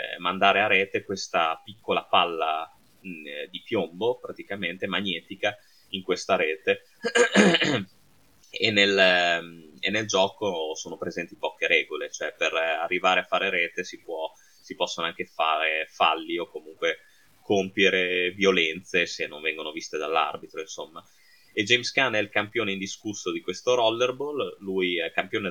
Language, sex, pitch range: Italian, male, 95-135 Hz